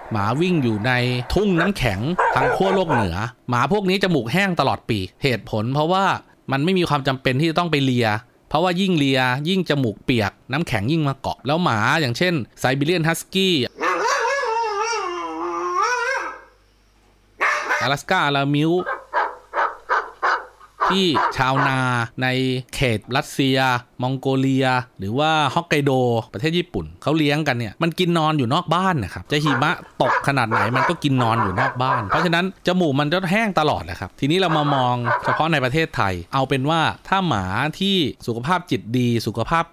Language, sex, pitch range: Thai, male, 120-165 Hz